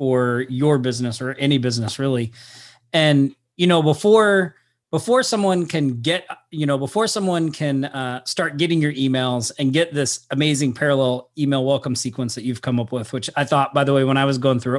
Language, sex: English, male